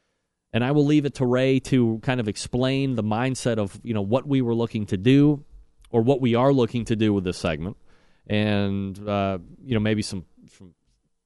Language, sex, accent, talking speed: English, male, American, 210 wpm